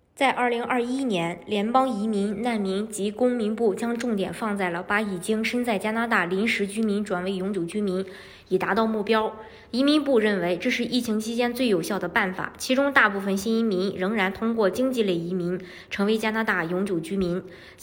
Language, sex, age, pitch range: Chinese, male, 20-39, 190-240 Hz